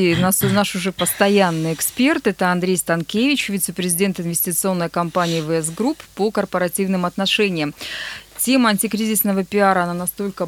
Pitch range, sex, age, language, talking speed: 175-220 Hz, female, 20-39, Russian, 120 wpm